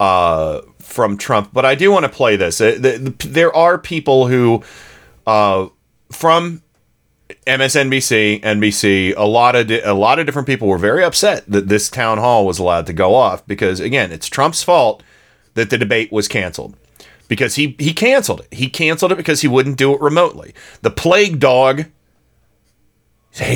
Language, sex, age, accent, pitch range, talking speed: English, male, 40-59, American, 105-145 Hz, 170 wpm